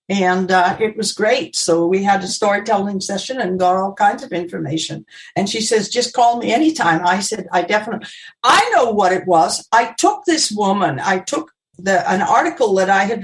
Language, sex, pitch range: English, female, 190-245 Hz